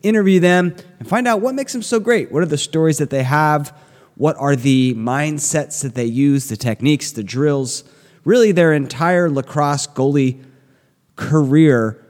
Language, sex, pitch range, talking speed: English, male, 125-165 Hz, 170 wpm